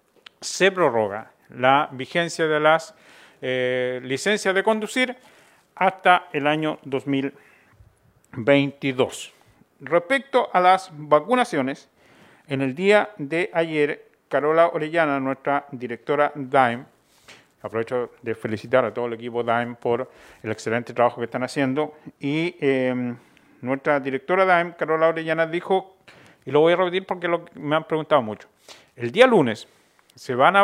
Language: Spanish